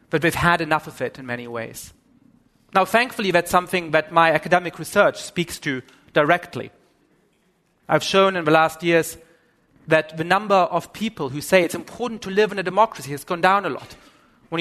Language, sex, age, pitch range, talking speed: English, male, 30-49, 150-195 Hz, 195 wpm